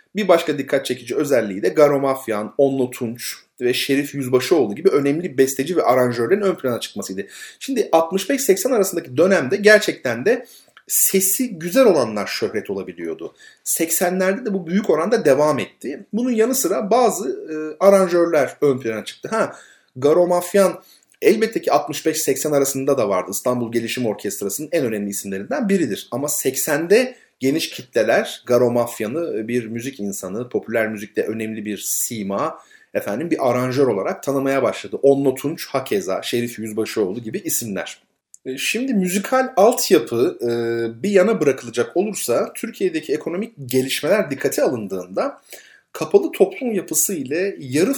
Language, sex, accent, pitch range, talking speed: Turkish, male, native, 125-190 Hz, 135 wpm